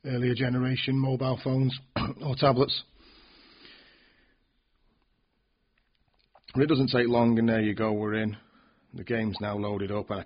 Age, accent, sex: 40-59, British, male